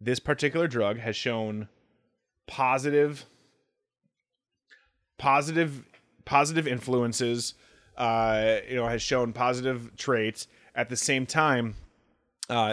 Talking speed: 100 wpm